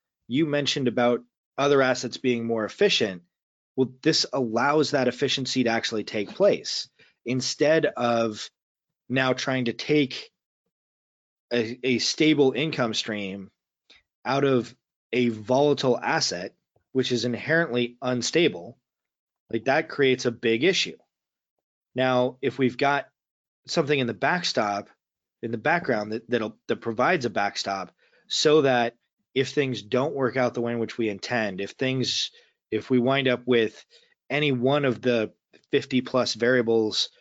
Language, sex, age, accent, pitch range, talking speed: English, male, 20-39, American, 115-135 Hz, 140 wpm